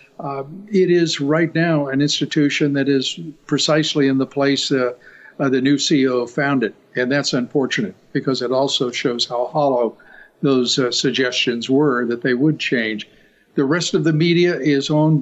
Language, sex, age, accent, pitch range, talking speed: English, male, 50-69, American, 130-155 Hz, 170 wpm